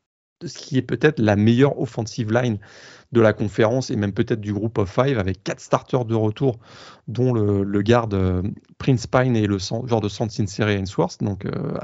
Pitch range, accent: 105-125 Hz, French